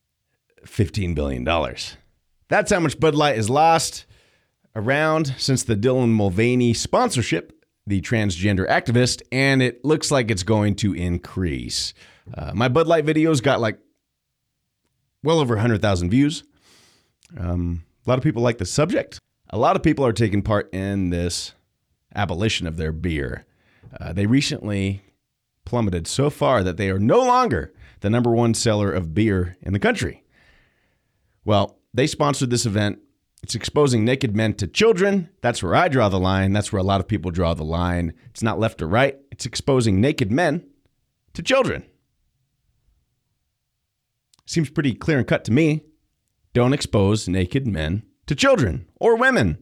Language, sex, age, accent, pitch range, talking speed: English, male, 30-49, American, 95-135 Hz, 160 wpm